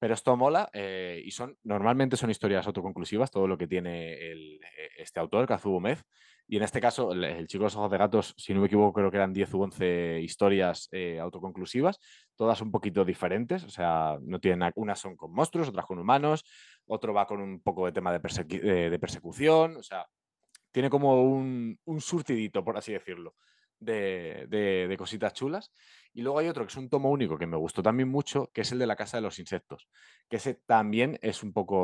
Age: 20-39